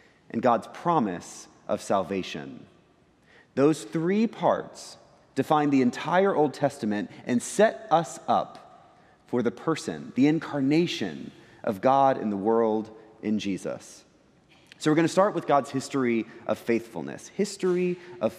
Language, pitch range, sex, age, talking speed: English, 120-170 Hz, male, 30-49, 135 wpm